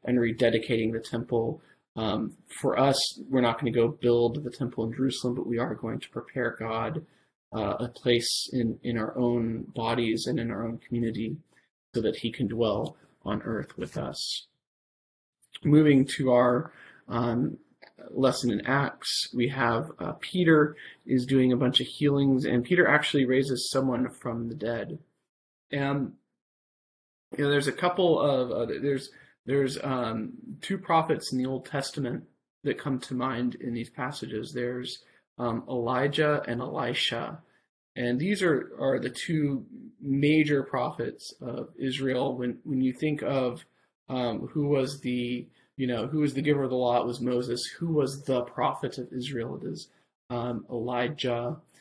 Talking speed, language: 165 wpm, English